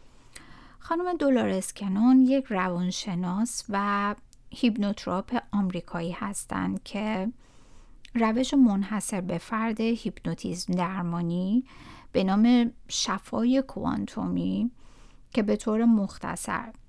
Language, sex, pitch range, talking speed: Persian, female, 190-240 Hz, 85 wpm